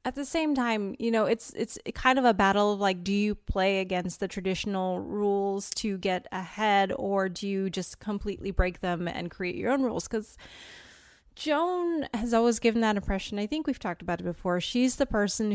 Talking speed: 205 wpm